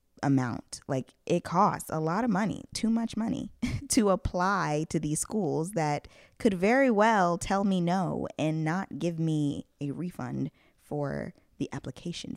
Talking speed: 155 wpm